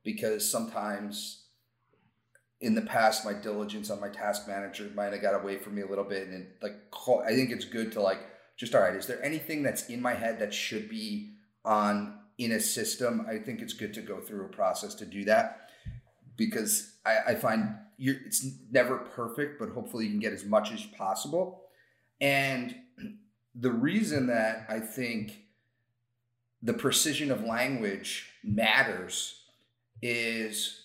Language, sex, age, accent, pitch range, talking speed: English, male, 30-49, American, 110-145 Hz, 165 wpm